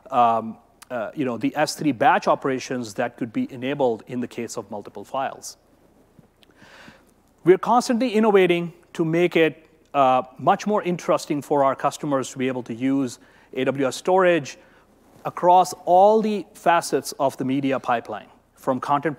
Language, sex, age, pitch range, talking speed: English, male, 30-49, 130-175 Hz, 150 wpm